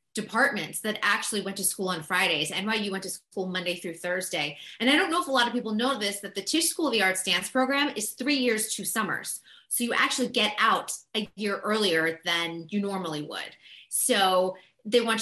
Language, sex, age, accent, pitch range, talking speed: English, female, 30-49, American, 190-240 Hz, 215 wpm